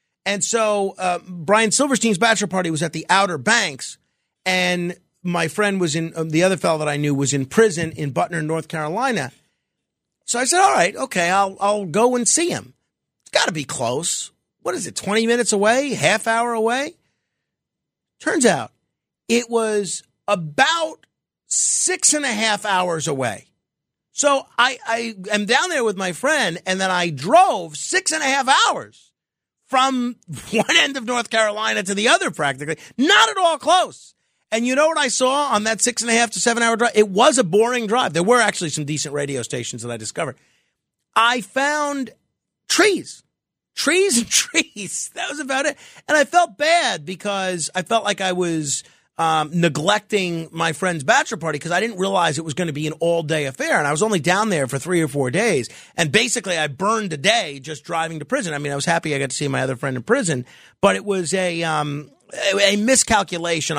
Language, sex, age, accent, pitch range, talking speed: English, male, 50-69, American, 160-235 Hz, 195 wpm